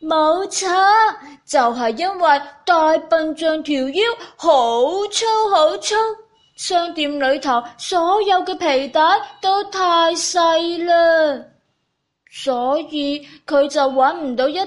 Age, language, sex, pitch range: 20-39, Chinese, female, 255-365 Hz